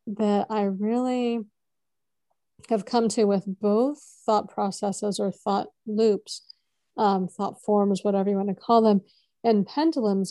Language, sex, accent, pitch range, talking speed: English, female, American, 195-225 Hz, 140 wpm